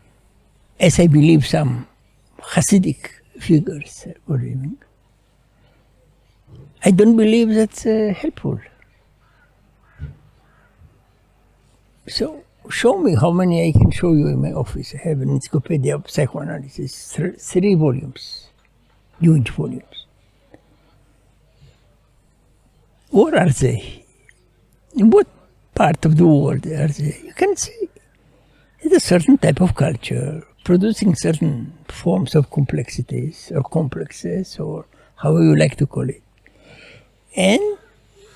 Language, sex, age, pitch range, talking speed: English, male, 60-79, 130-210 Hz, 110 wpm